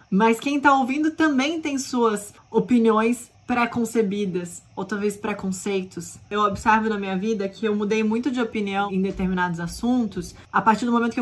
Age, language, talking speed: 20-39, Portuguese, 165 wpm